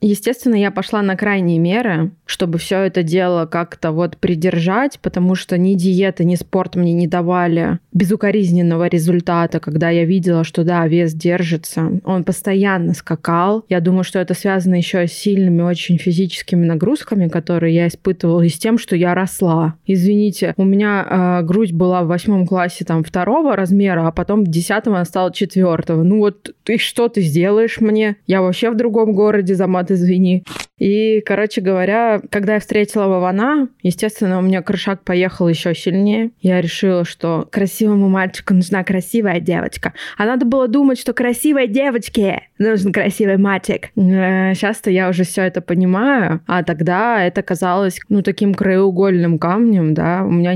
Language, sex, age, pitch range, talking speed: Russian, female, 20-39, 175-205 Hz, 160 wpm